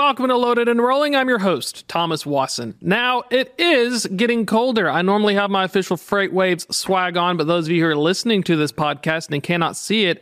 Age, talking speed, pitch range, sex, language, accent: 40-59, 225 wpm, 155-230 Hz, male, English, American